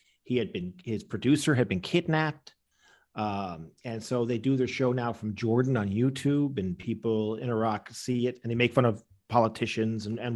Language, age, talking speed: English, 40-59, 195 wpm